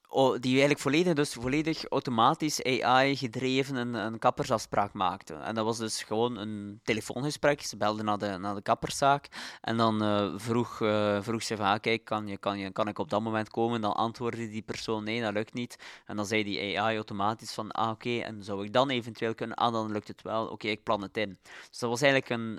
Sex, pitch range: male, 105-125 Hz